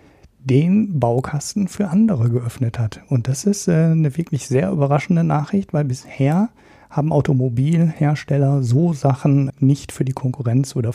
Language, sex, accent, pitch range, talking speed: German, male, German, 120-145 Hz, 145 wpm